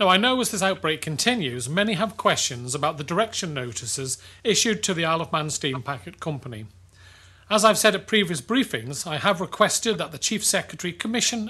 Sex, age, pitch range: male, 40-59, 135-200 Hz